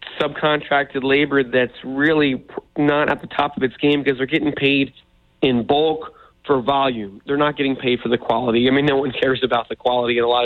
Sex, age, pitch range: male, 30-49, 120-140 Hz